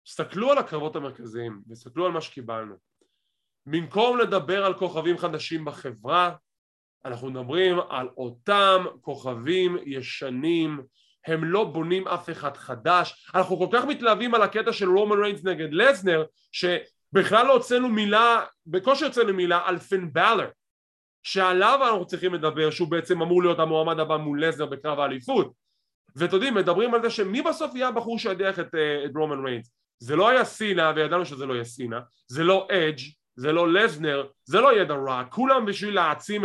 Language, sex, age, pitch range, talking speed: English, male, 20-39, 155-210 Hz, 125 wpm